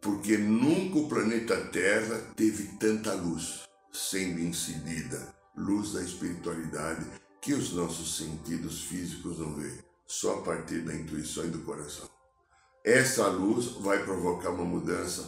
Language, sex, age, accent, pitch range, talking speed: Portuguese, male, 60-79, Brazilian, 95-150 Hz, 135 wpm